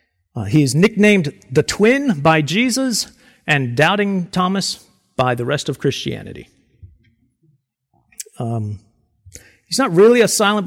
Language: English